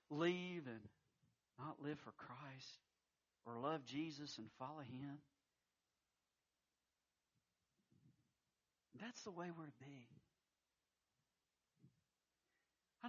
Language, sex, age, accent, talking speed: English, male, 50-69, American, 85 wpm